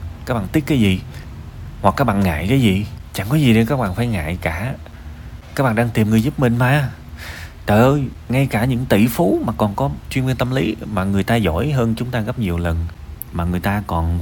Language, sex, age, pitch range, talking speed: Vietnamese, male, 20-39, 80-115 Hz, 235 wpm